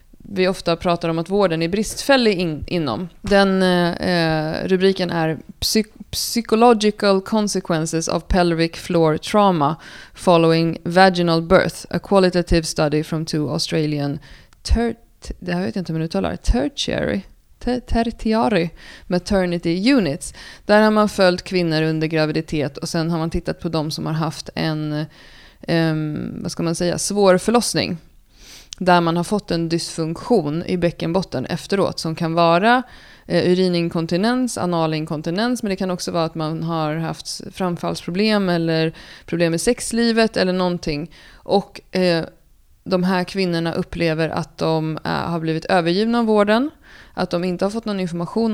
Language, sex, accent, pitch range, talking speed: Swedish, female, native, 165-200 Hz, 140 wpm